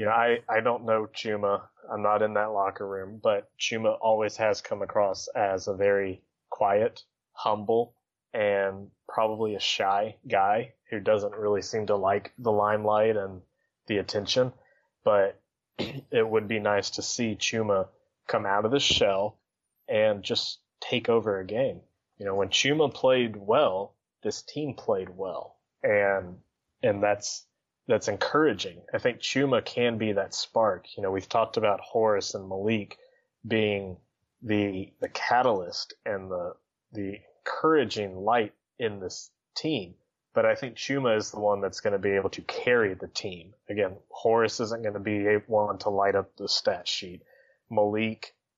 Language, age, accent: English, 20-39, American